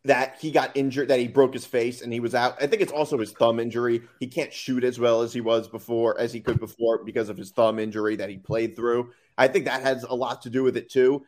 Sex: male